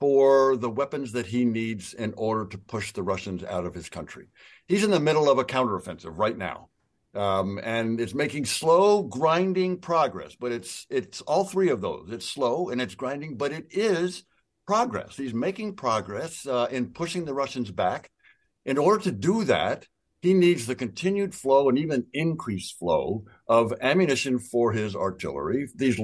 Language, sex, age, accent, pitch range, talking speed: English, male, 60-79, American, 120-160 Hz, 175 wpm